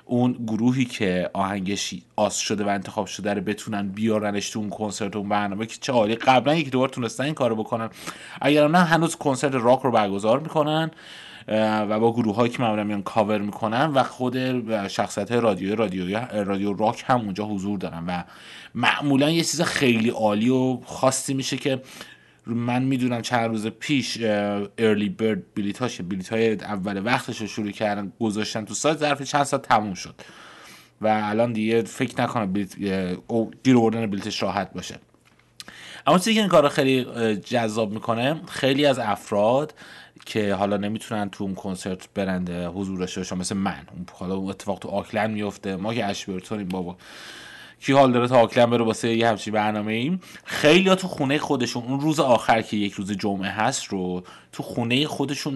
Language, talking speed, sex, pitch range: Persian, 165 wpm, male, 100-130 Hz